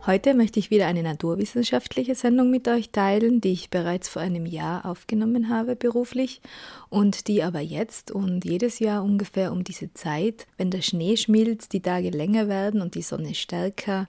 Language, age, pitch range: German, 20-39, 180-225 Hz